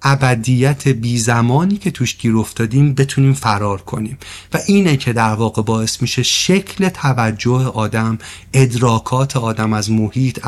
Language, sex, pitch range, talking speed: Persian, male, 115-145 Hz, 130 wpm